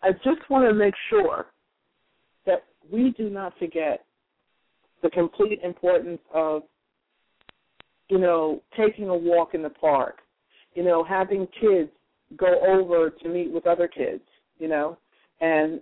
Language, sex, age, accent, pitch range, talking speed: English, female, 50-69, American, 165-195 Hz, 140 wpm